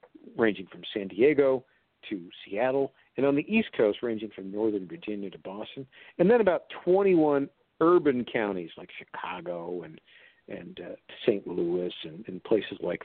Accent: American